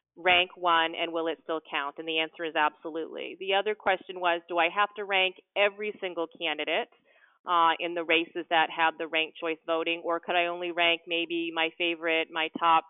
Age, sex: 30-49, female